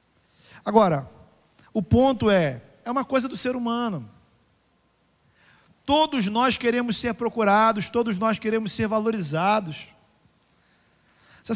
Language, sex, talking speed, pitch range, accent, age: Portuguese, male, 110 wpm, 160-215 Hz, Brazilian, 40-59